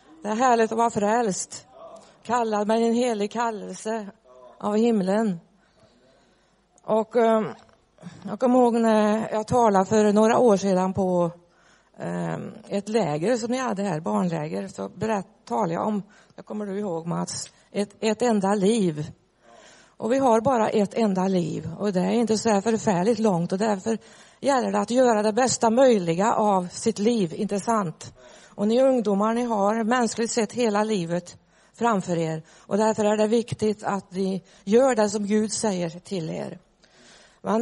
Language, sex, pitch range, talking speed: Swedish, female, 195-230 Hz, 155 wpm